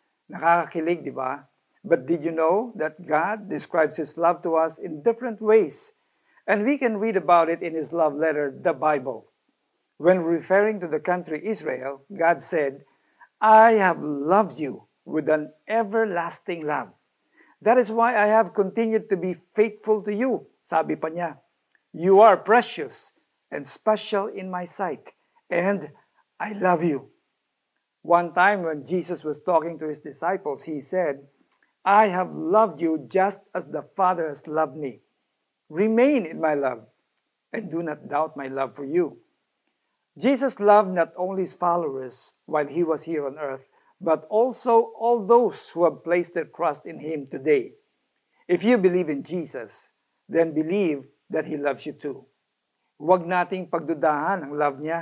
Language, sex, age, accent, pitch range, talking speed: Filipino, male, 50-69, native, 155-210 Hz, 160 wpm